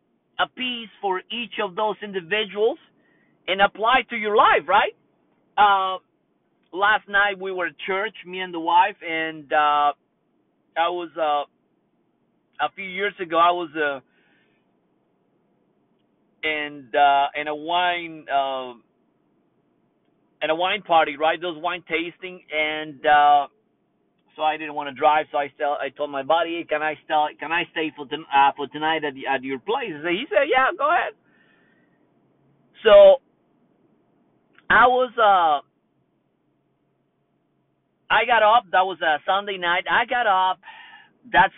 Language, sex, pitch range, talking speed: English, male, 150-200 Hz, 150 wpm